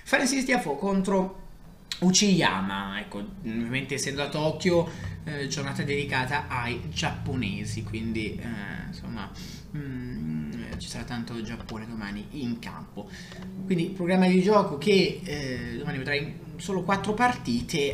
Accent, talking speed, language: native, 125 wpm, Italian